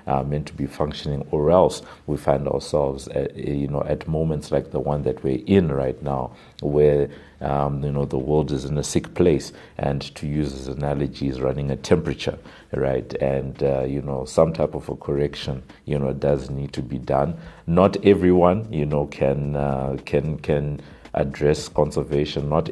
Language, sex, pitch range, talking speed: English, male, 70-75 Hz, 180 wpm